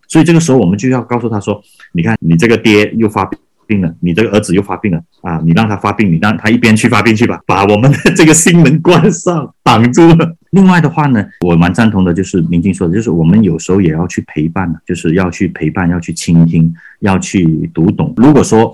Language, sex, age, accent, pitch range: Chinese, male, 30-49, native, 85-115 Hz